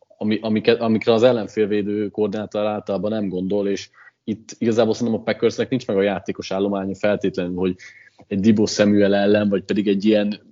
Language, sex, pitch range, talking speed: Hungarian, male, 100-115 Hz, 165 wpm